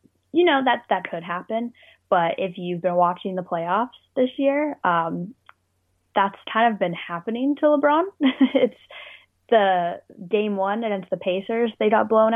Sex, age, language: female, 10-29, English